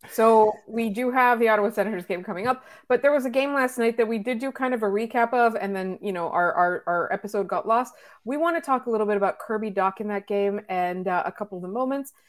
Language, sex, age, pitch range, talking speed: English, female, 30-49, 190-255 Hz, 275 wpm